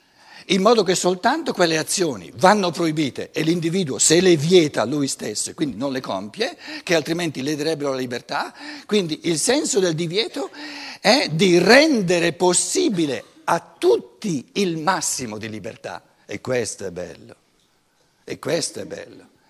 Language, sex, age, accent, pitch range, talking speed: Italian, male, 60-79, native, 140-195 Hz, 150 wpm